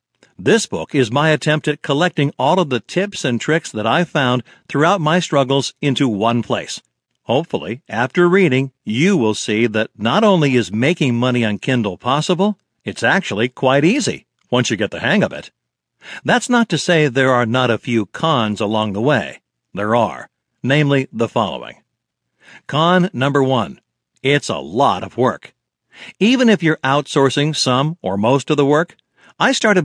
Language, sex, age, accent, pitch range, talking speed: English, male, 60-79, American, 120-165 Hz, 175 wpm